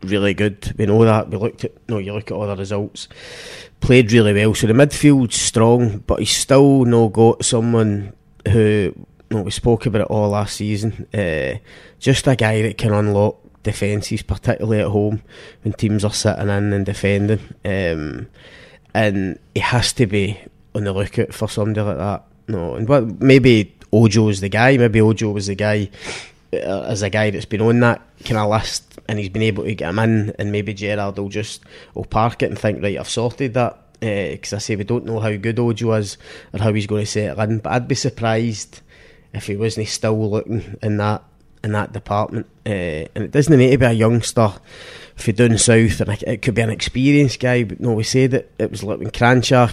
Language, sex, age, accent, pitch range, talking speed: English, male, 20-39, British, 105-115 Hz, 210 wpm